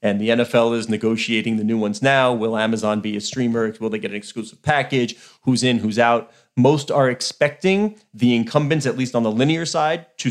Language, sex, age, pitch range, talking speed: English, male, 30-49, 120-165 Hz, 210 wpm